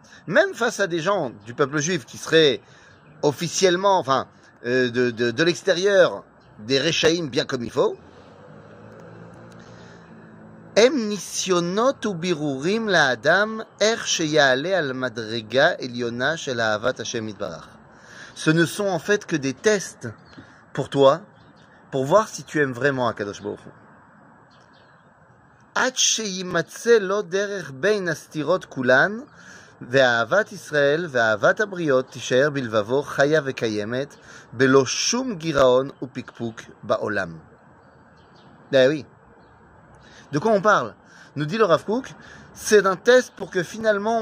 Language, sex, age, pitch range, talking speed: French, male, 30-49, 130-200 Hz, 80 wpm